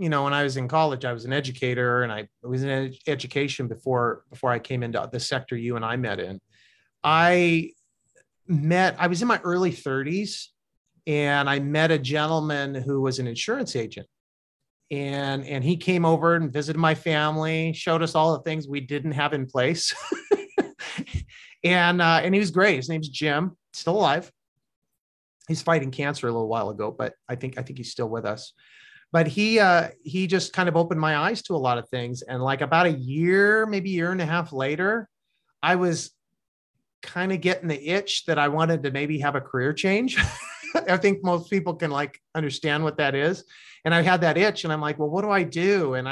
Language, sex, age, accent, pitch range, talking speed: English, male, 30-49, American, 135-175 Hz, 205 wpm